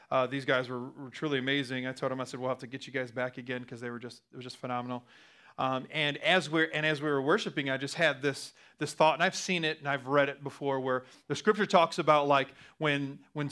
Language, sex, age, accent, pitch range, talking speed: English, male, 30-49, American, 145-185 Hz, 265 wpm